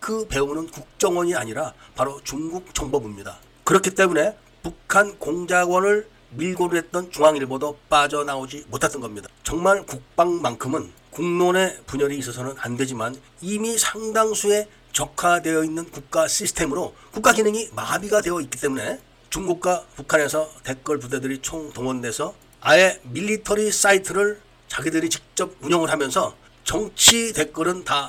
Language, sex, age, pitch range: Korean, male, 40-59, 140-190 Hz